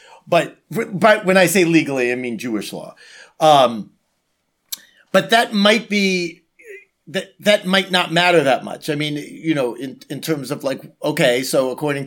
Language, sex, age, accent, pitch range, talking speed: English, male, 40-59, American, 135-175 Hz, 170 wpm